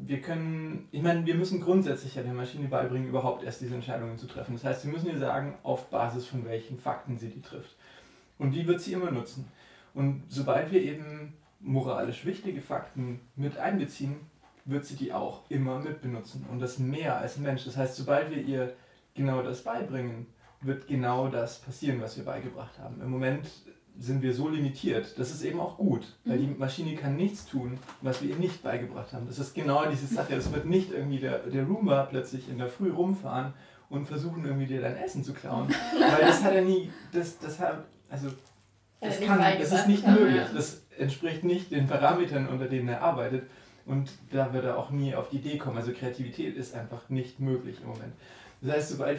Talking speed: 205 wpm